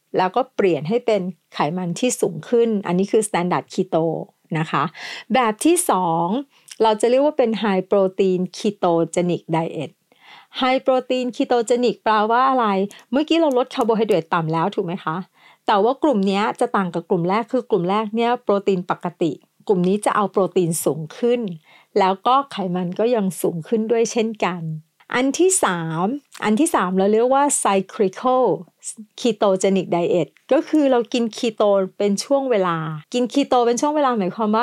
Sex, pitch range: female, 185-245 Hz